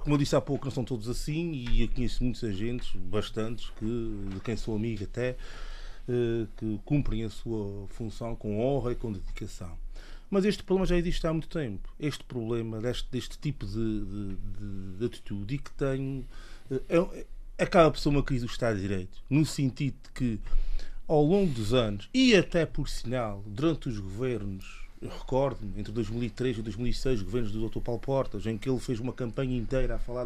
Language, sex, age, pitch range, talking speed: Portuguese, male, 30-49, 110-135 Hz, 195 wpm